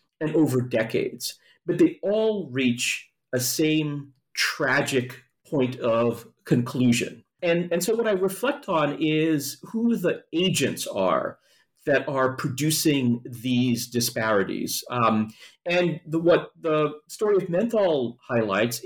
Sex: male